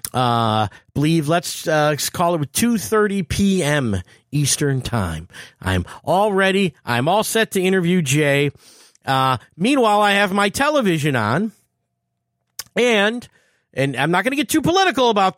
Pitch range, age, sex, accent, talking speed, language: 130-205 Hz, 40-59, male, American, 140 wpm, English